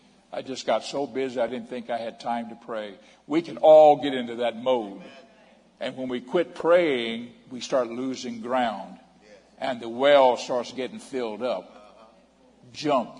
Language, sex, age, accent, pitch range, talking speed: English, male, 60-79, American, 115-145 Hz, 170 wpm